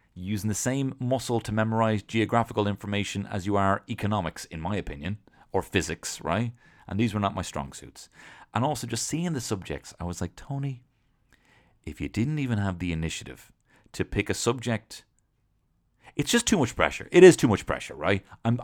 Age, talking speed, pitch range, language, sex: 30-49, 185 wpm, 90-115 Hz, English, male